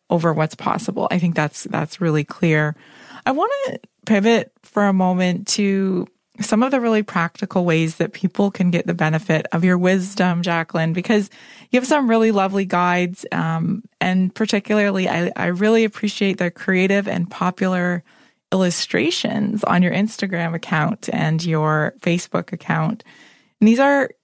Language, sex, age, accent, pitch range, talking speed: English, female, 20-39, American, 170-210 Hz, 155 wpm